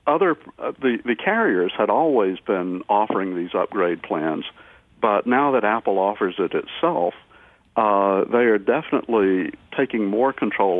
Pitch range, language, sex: 90-115 Hz, English, male